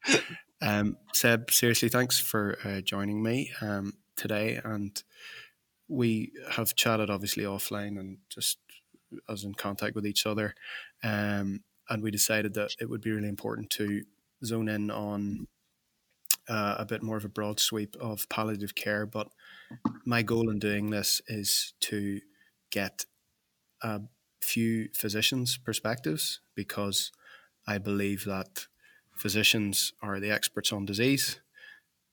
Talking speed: 135 wpm